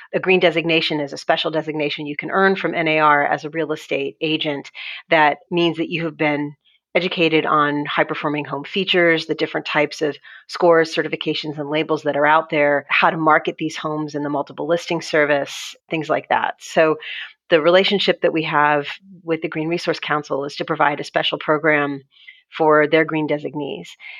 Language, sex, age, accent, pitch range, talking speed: English, female, 30-49, American, 150-170 Hz, 185 wpm